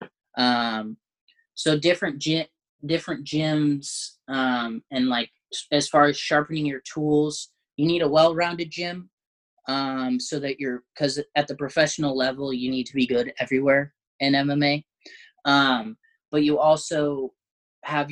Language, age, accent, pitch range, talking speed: English, 20-39, American, 130-150 Hz, 140 wpm